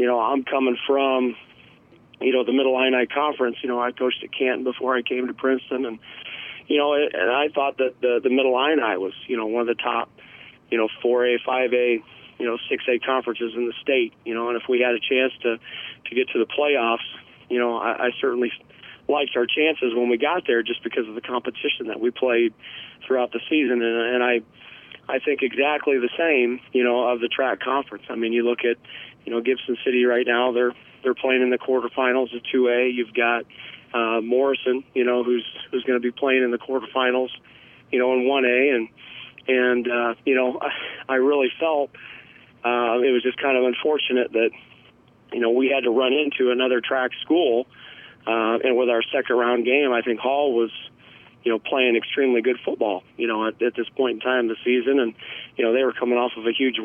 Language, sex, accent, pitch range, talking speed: English, male, American, 120-130 Hz, 220 wpm